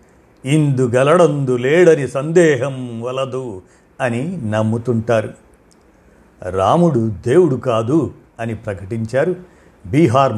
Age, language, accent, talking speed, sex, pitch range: 50-69, Telugu, native, 65 wpm, male, 120-155 Hz